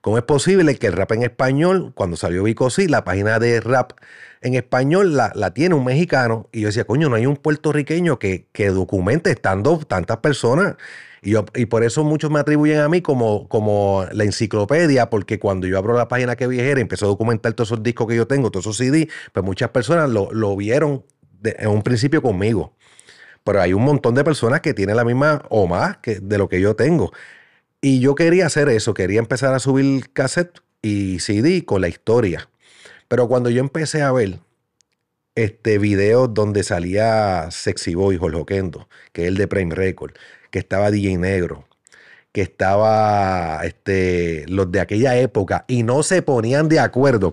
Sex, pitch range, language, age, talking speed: male, 105-145 Hz, Spanish, 30-49, 195 wpm